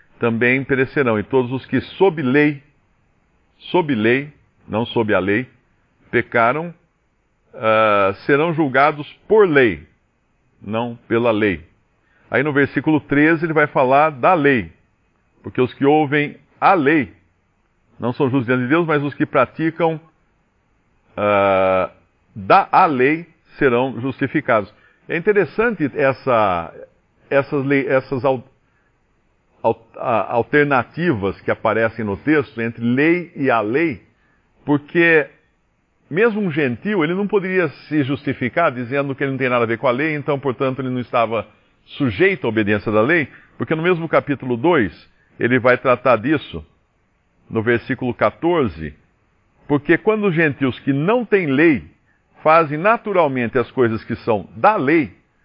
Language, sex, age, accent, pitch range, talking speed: Portuguese, male, 50-69, Brazilian, 115-155 Hz, 135 wpm